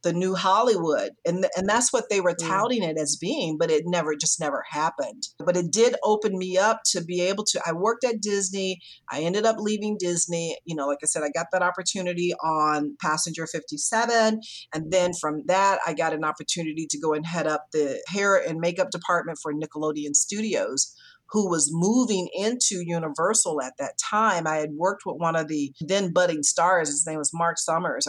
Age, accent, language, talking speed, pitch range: 40-59, American, English, 200 wpm, 155-195 Hz